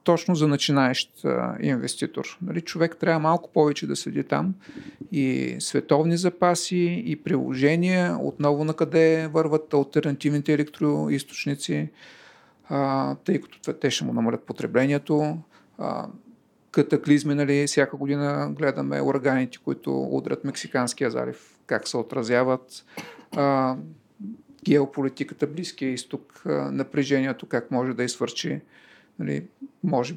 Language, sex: Bulgarian, male